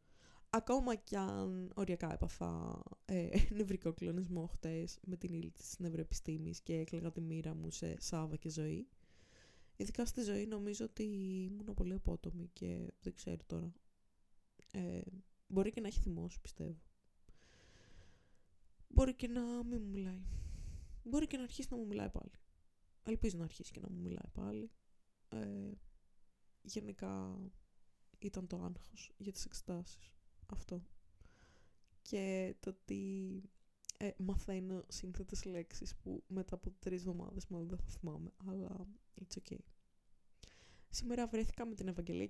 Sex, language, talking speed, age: female, Greek, 135 wpm, 20-39